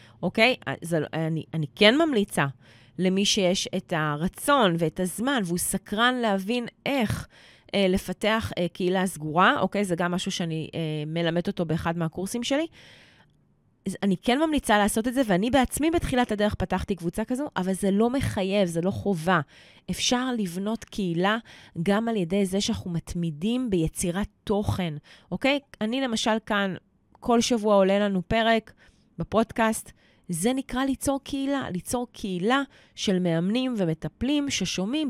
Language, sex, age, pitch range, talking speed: Hebrew, female, 20-39, 170-240 Hz, 140 wpm